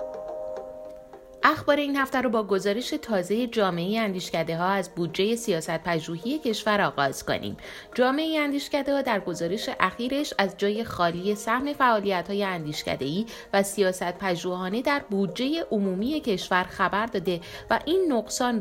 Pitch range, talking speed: 175-255 Hz, 130 wpm